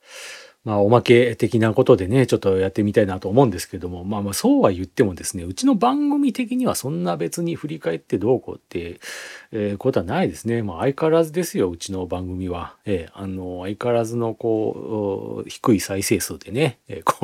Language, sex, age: Japanese, male, 40-59